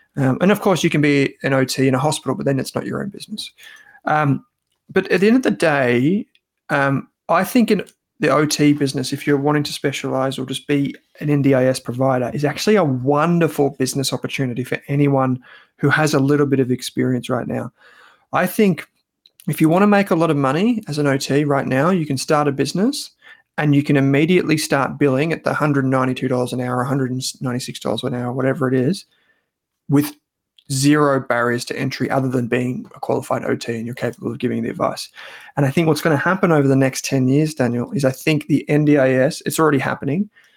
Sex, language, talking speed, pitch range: male, English, 205 wpm, 130-155 Hz